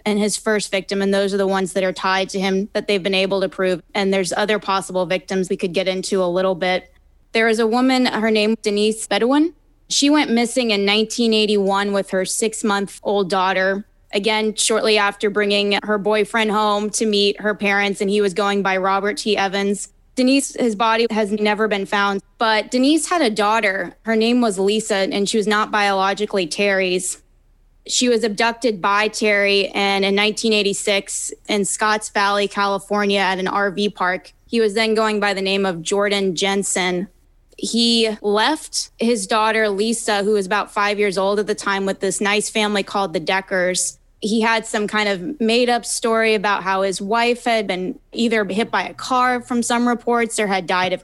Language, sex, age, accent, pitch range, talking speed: English, female, 10-29, American, 195-220 Hz, 190 wpm